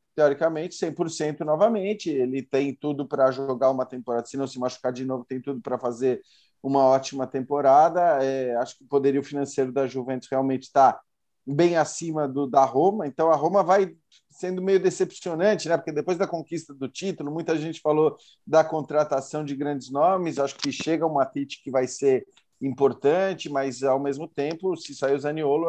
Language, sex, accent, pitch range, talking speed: Portuguese, male, Brazilian, 135-165 Hz, 180 wpm